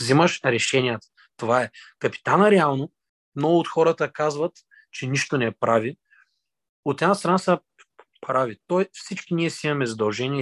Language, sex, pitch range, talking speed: Bulgarian, male, 130-160 Hz, 145 wpm